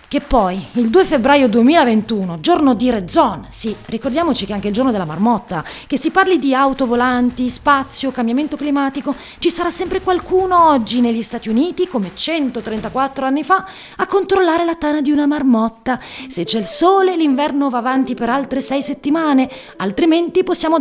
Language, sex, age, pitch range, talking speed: Italian, female, 30-49, 230-315 Hz, 170 wpm